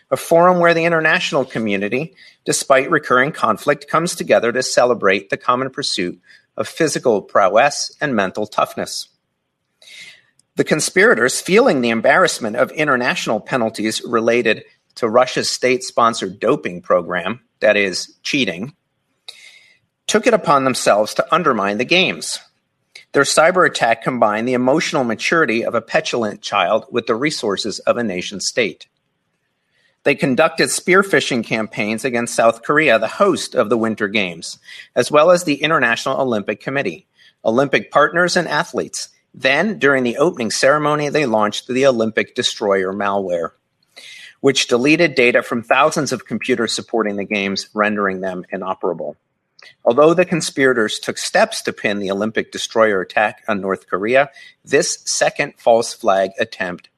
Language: English